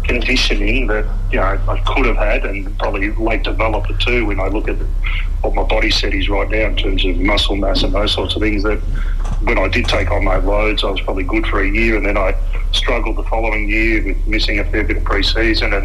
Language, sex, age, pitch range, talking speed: English, male, 40-59, 90-110 Hz, 245 wpm